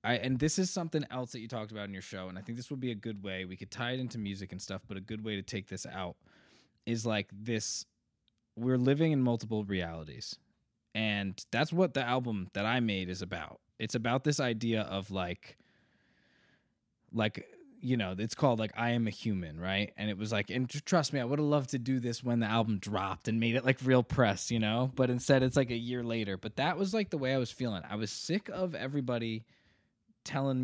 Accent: American